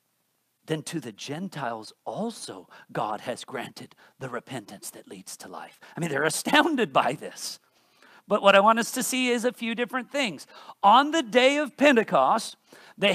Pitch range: 200-280 Hz